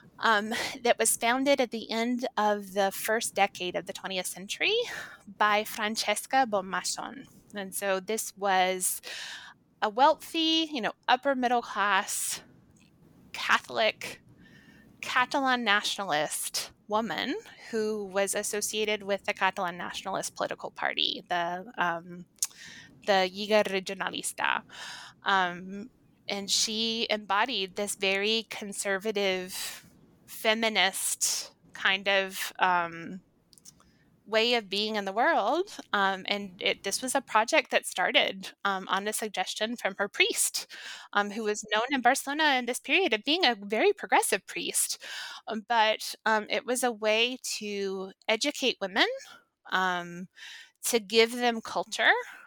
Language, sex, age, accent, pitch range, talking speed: English, female, 20-39, American, 195-245 Hz, 125 wpm